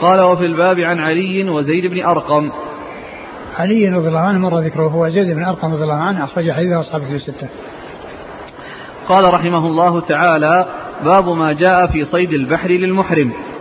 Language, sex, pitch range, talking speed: Arabic, male, 160-185 Hz, 115 wpm